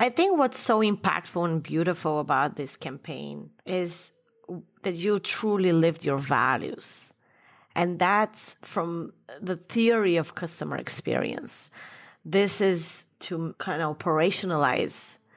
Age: 30-49